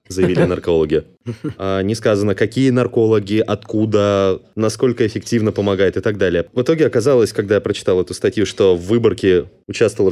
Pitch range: 95-120 Hz